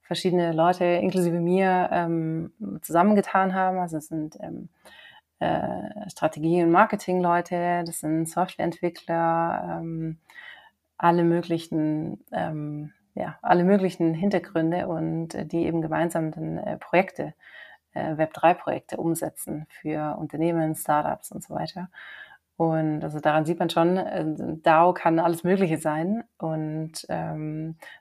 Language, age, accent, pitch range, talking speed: German, 30-49, German, 160-180 Hz, 120 wpm